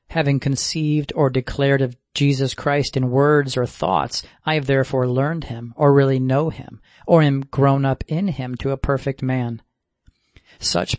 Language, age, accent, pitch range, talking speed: English, 40-59, American, 130-150 Hz, 170 wpm